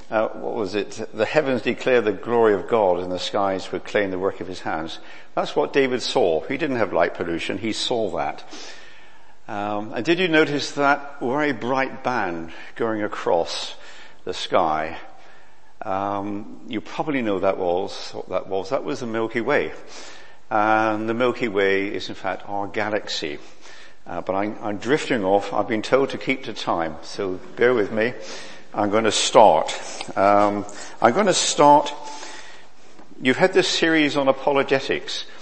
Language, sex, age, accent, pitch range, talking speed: English, male, 50-69, British, 110-145 Hz, 170 wpm